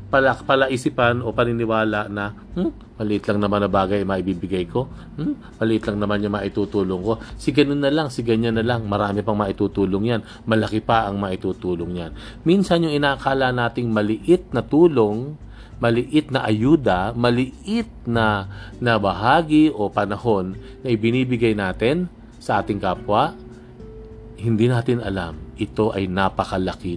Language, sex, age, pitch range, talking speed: Filipino, male, 40-59, 95-120 Hz, 140 wpm